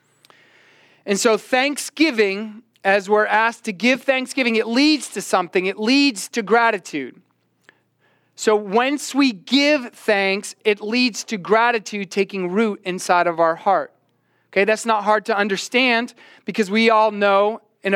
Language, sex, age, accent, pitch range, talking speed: English, male, 30-49, American, 190-230 Hz, 145 wpm